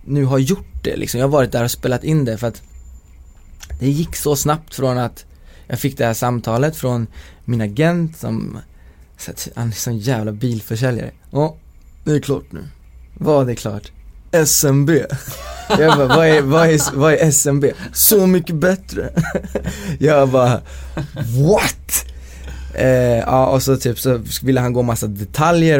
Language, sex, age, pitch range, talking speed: Swedish, male, 20-39, 105-135 Hz, 170 wpm